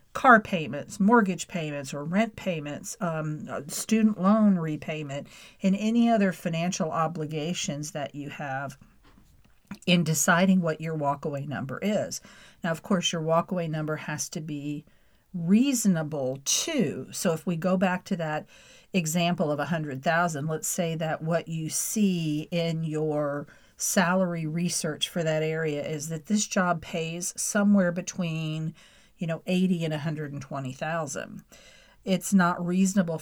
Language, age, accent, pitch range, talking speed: English, 50-69, American, 155-190 Hz, 140 wpm